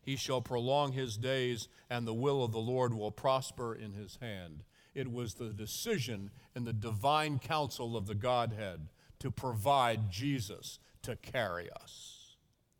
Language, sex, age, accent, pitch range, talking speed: English, male, 50-69, American, 120-185 Hz, 155 wpm